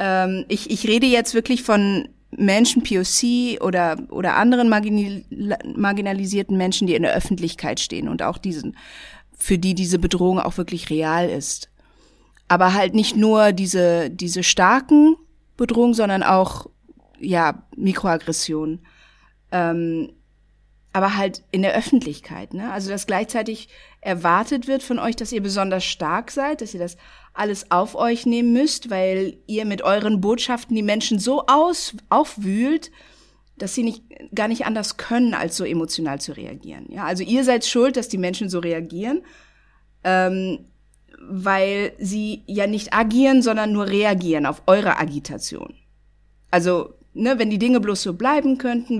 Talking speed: 150 wpm